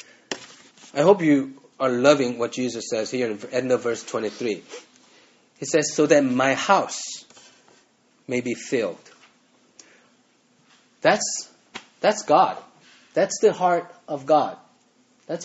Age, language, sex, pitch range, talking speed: 30-49, English, male, 130-195 Hz, 130 wpm